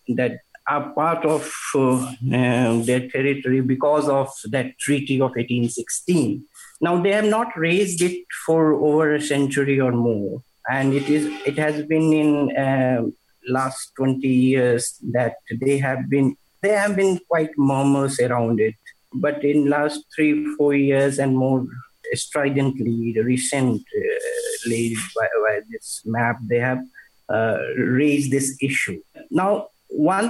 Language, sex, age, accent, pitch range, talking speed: English, male, 50-69, Indian, 125-150 Hz, 145 wpm